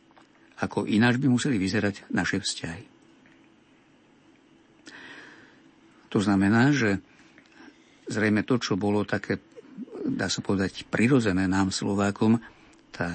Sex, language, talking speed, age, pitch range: male, Slovak, 105 wpm, 50-69, 100-125 Hz